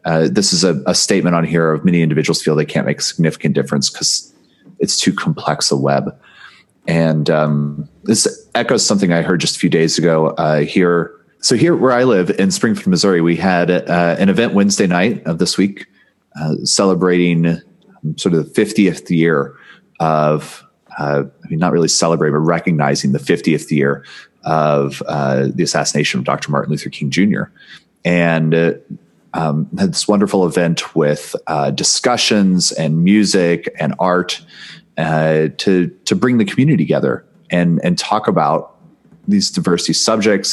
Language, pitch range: English, 75-95 Hz